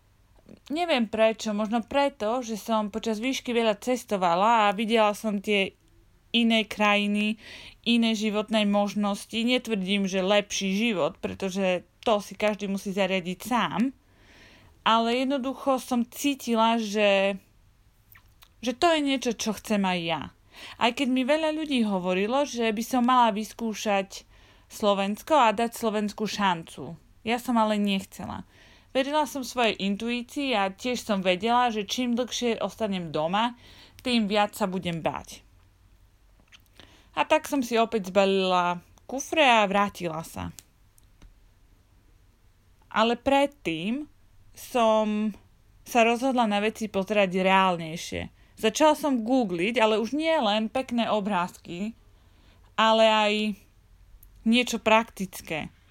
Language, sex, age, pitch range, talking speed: Slovak, female, 30-49, 180-235 Hz, 120 wpm